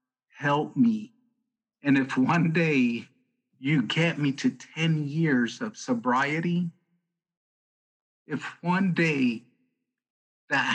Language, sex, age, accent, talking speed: English, male, 50-69, American, 100 wpm